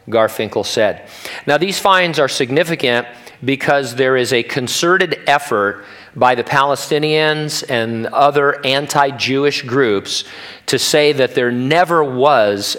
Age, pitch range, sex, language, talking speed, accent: 50-69, 110-140 Hz, male, English, 125 wpm, American